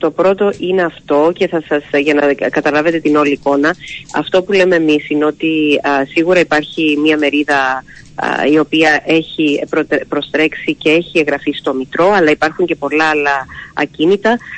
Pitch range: 145-180 Hz